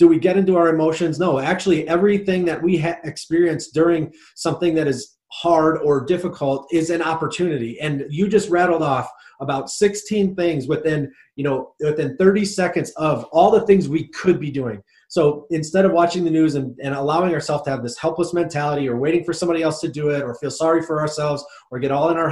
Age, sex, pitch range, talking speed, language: 30-49, male, 140-175 Hz, 210 wpm, English